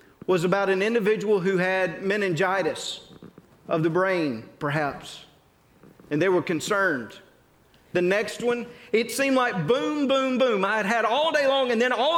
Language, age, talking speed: English, 40-59, 165 wpm